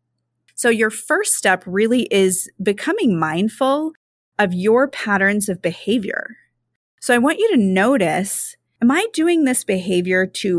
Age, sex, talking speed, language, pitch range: 30-49, female, 140 wpm, English, 185-260 Hz